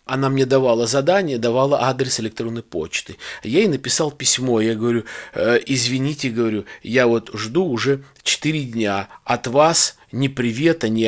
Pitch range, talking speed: 120-150 Hz, 150 wpm